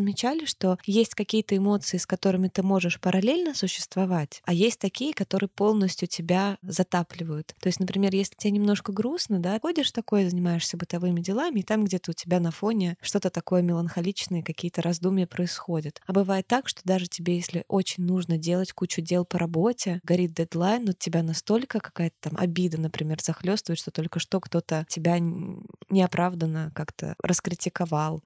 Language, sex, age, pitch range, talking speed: Russian, female, 20-39, 170-205 Hz, 160 wpm